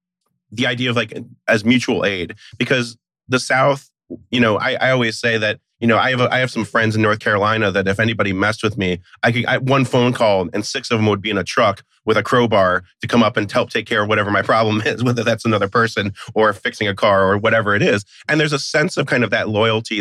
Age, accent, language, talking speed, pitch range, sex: 30-49, American, English, 260 wpm, 105-130 Hz, male